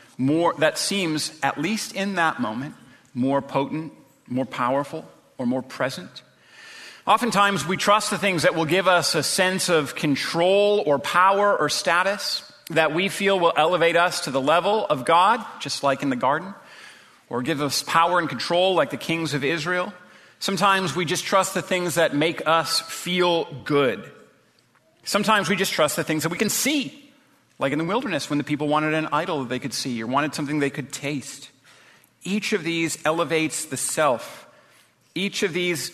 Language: English